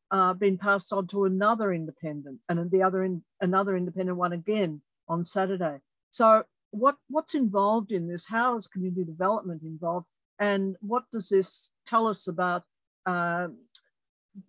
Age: 50-69